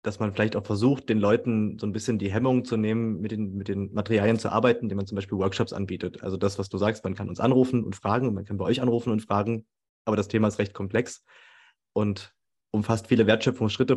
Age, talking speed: 30-49, 230 wpm